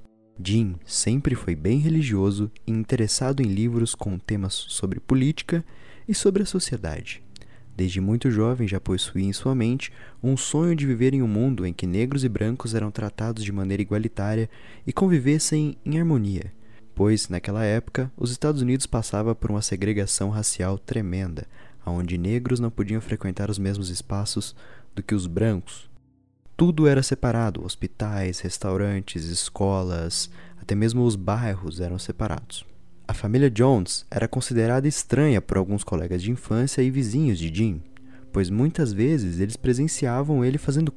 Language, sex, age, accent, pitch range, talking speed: Portuguese, male, 20-39, Brazilian, 100-130 Hz, 150 wpm